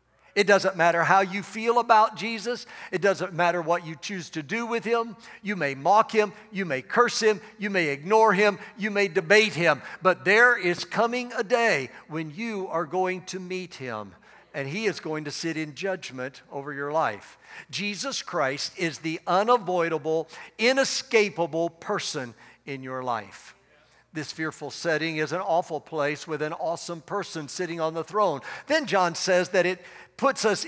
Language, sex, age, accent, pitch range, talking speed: English, male, 60-79, American, 160-205 Hz, 175 wpm